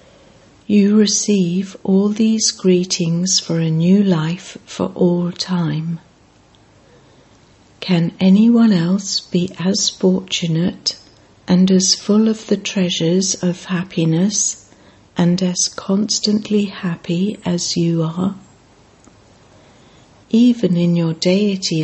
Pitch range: 165-195 Hz